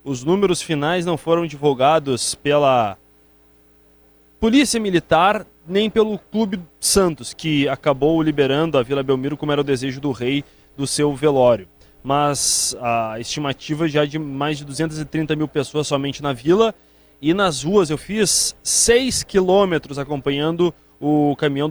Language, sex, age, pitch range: Portuguese, male, 20-39, 140-185 Hz